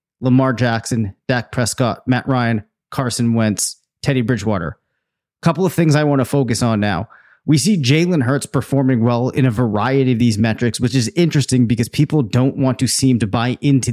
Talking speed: 190 wpm